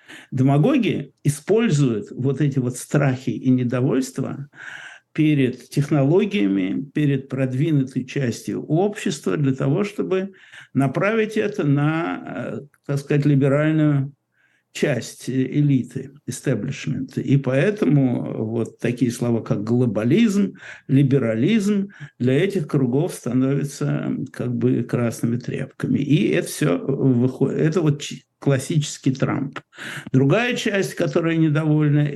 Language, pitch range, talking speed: Russian, 125-145 Hz, 100 wpm